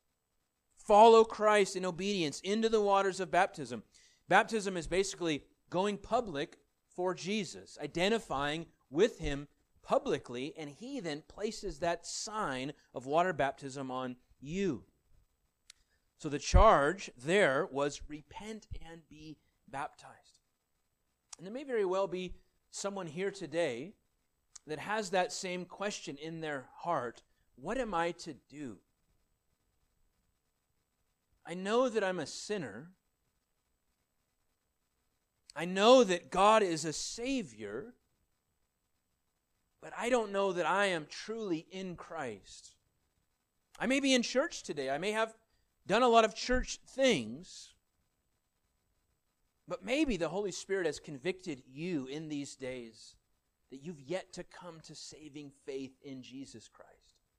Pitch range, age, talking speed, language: 135-205 Hz, 30-49, 130 wpm, English